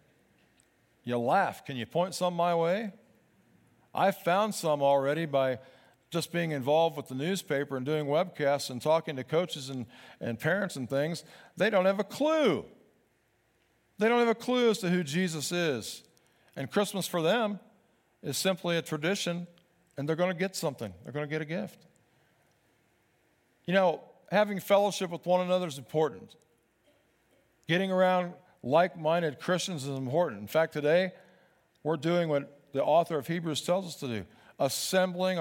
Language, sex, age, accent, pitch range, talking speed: English, male, 50-69, American, 155-210 Hz, 165 wpm